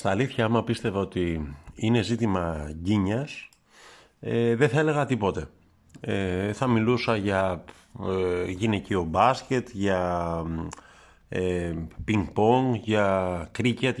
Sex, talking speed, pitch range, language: male, 105 wpm, 95-125 Hz, Greek